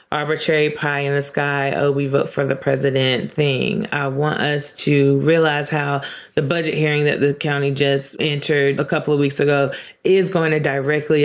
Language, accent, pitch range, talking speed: English, American, 135-160 Hz, 185 wpm